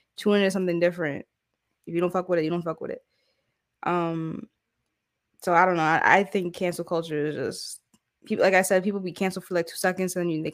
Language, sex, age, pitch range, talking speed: English, female, 10-29, 165-190 Hz, 240 wpm